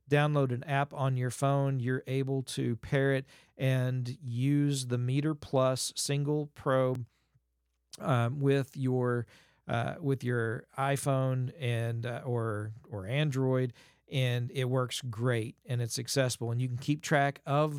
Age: 40-59